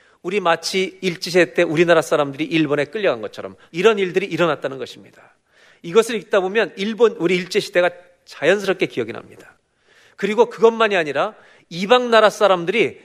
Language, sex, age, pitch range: Korean, male, 40-59, 170-220 Hz